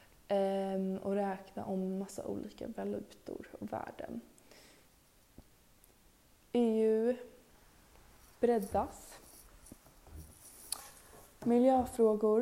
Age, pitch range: 20-39, 195-235 Hz